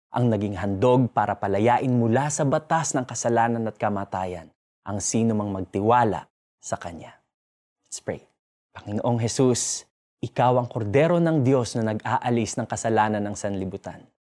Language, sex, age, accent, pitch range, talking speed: Filipino, male, 20-39, native, 105-140 Hz, 140 wpm